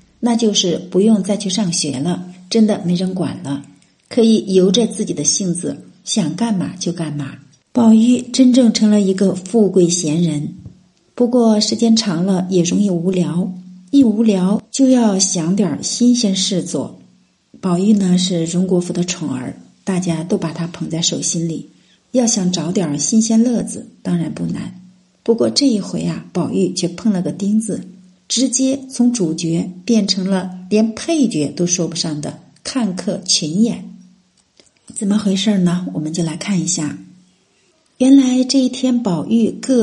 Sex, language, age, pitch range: female, Japanese, 50-69, 175-225 Hz